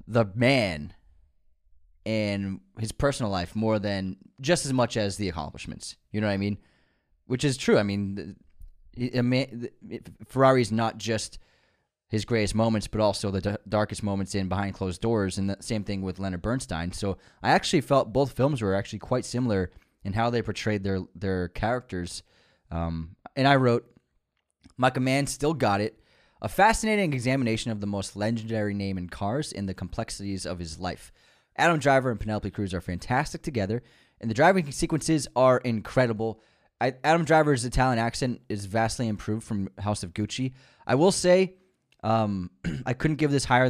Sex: male